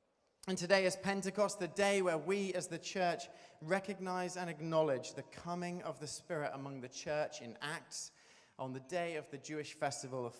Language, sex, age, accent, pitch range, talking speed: English, male, 30-49, British, 135-180 Hz, 185 wpm